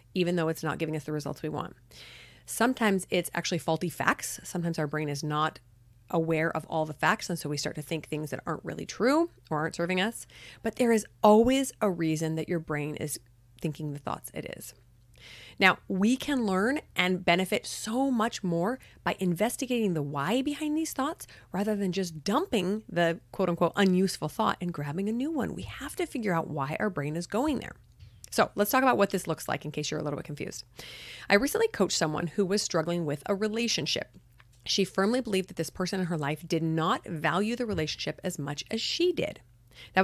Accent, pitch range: American, 155-210 Hz